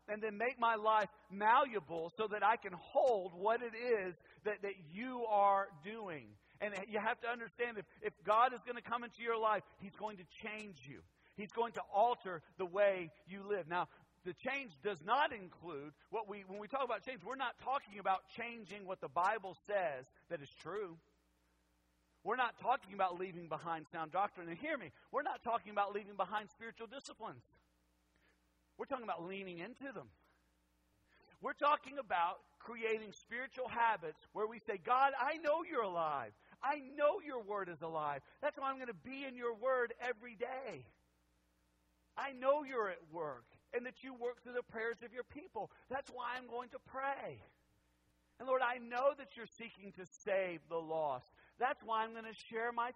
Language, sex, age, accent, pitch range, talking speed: English, male, 40-59, American, 175-245 Hz, 190 wpm